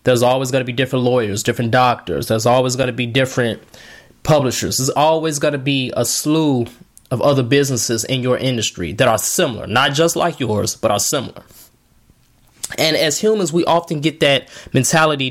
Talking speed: 185 wpm